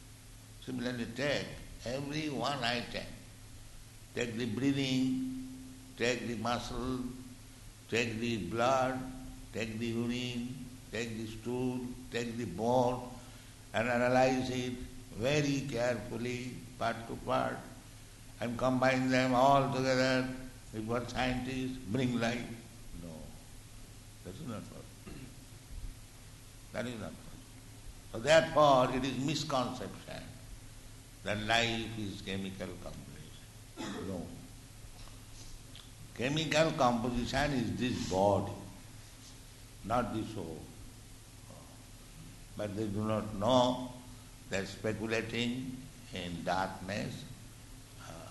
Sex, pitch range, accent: male, 115-130 Hz, Indian